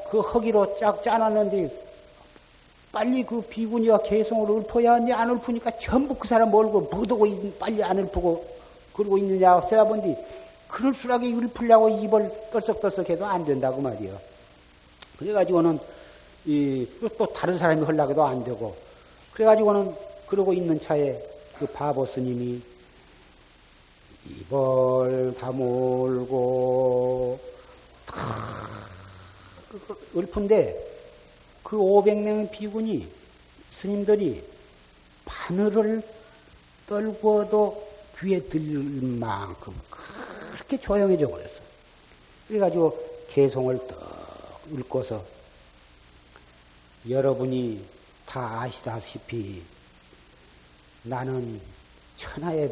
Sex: male